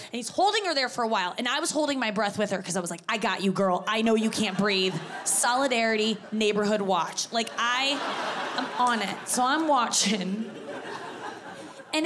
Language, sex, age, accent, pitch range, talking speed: English, female, 20-39, American, 205-280 Hz, 205 wpm